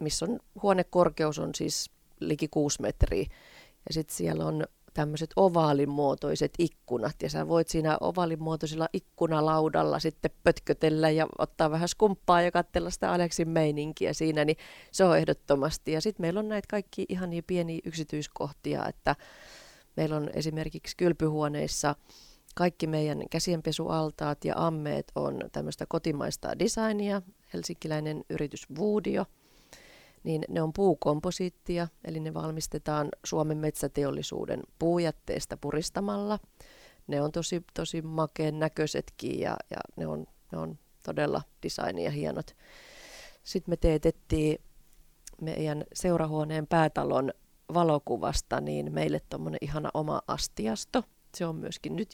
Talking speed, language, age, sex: 125 wpm, Finnish, 30-49, female